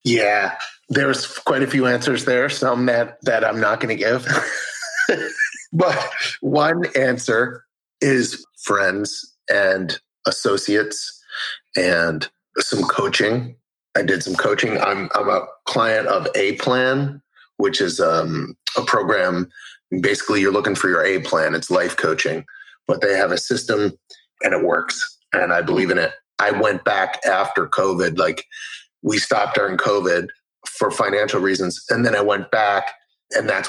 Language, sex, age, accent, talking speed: English, male, 30-49, American, 145 wpm